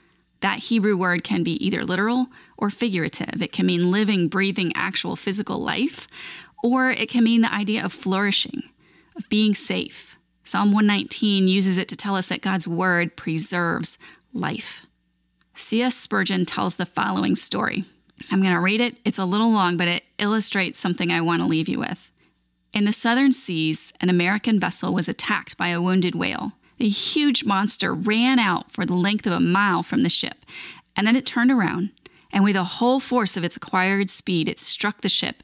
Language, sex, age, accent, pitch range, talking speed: English, female, 30-49, American, 175-220 Hz, 185 wpm